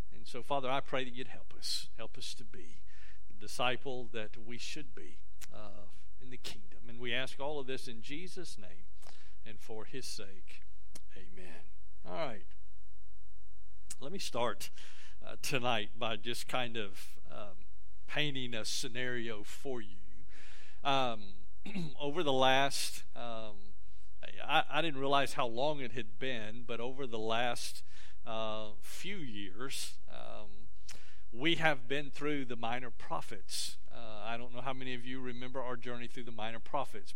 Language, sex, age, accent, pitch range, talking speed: English, male, 50-69, American, 100-135 Hz, 155 wpm